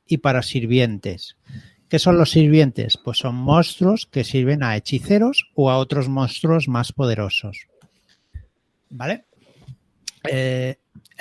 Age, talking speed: 60-79, 120 wpm